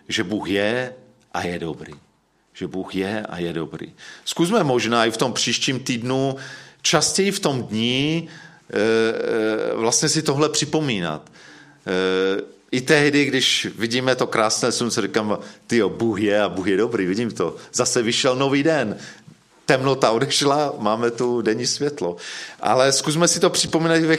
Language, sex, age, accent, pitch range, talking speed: Czech, male, 40-59, native, 115-150 Hz, 150 wpm